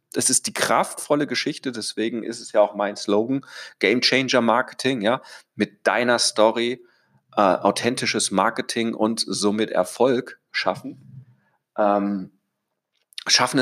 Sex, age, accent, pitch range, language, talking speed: male, 40-59, German, 115-145 Hz, German, 125 wpm